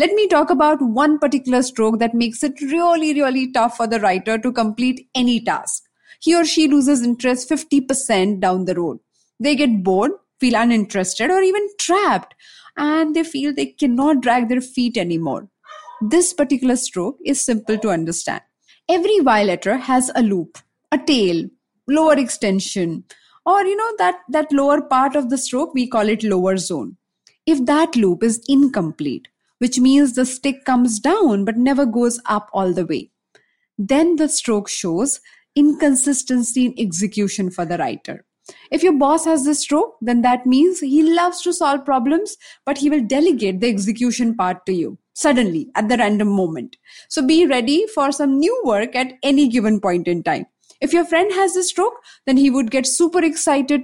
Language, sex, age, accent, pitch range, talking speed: English, female, 20-39, Indian, 220-300 Hz, 175 wpm